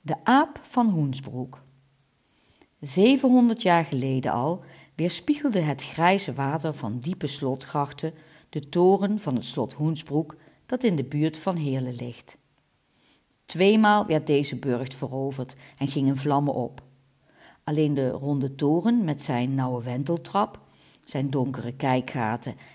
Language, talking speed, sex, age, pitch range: Dutch, 125 wpm, female, 50-69, 135-185 Hz